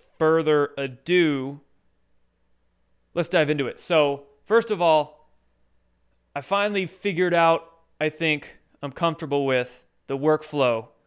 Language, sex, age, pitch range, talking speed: English, male, 20-39, 120-150 Hz, 115 wpm